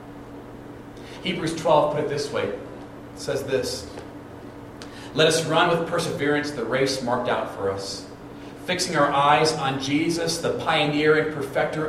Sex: male